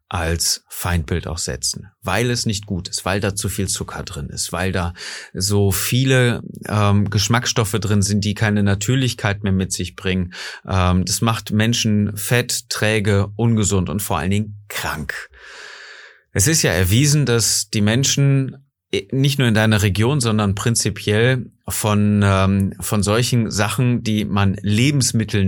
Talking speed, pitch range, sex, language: 155 wpm, 95-115 Hz, male, German